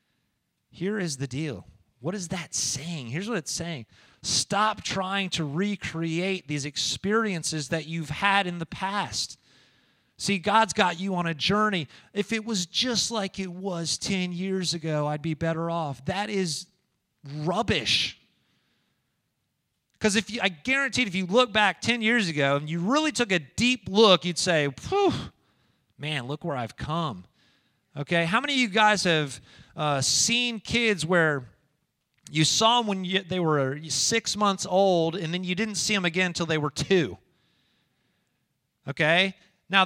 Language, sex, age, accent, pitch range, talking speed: English, male, 30-49, American, 160-210 Hz, 160 wpm